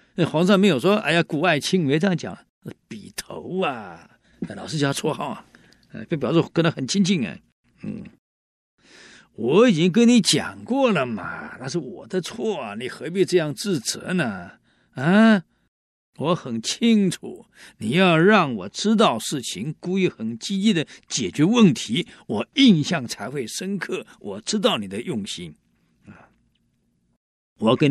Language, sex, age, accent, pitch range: Chinese, male, 50-69, native, 160-210 Hz